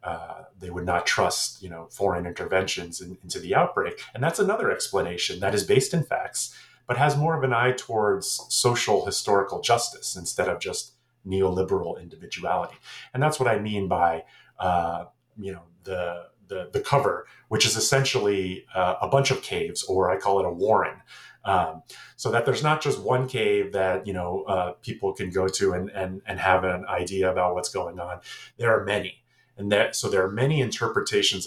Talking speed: 190 wpm